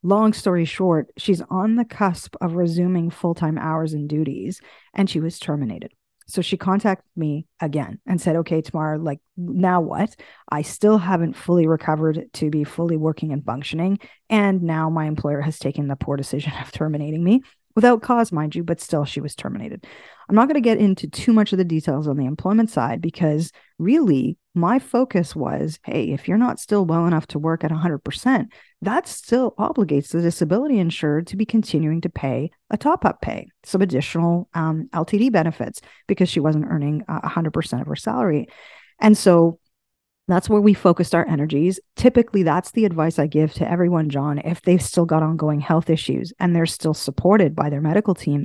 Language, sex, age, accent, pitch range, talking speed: English, female, 30-49, American, 155-195 Hz, 190 wpm